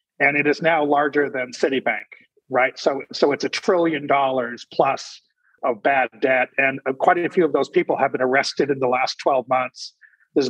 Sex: male